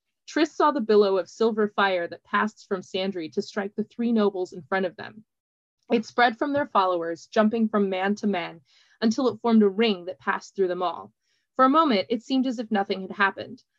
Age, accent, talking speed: 20-39, American, 220 wpm